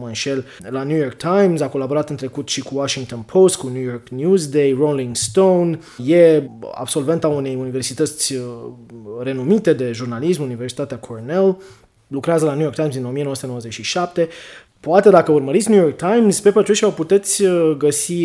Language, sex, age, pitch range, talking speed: English, male, 20-39, 135-175 Hz, 150 wpm